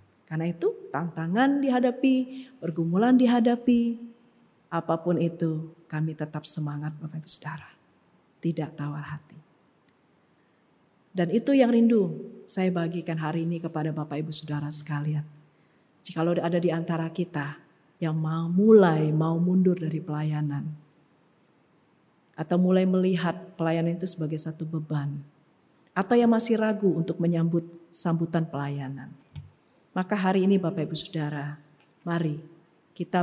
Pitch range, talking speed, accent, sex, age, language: 150-185 Hz, 120 wpm, native, female, 40-59, Indonesian